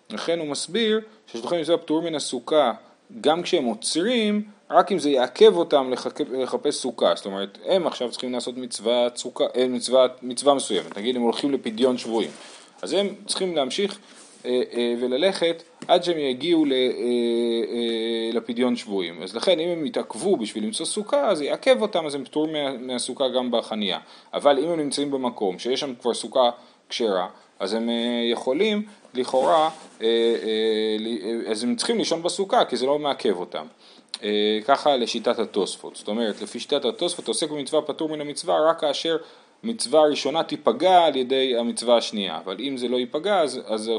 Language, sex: Hebrew, male